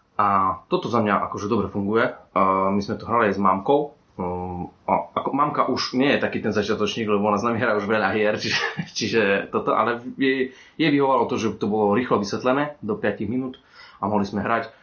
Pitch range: 95-125 Hz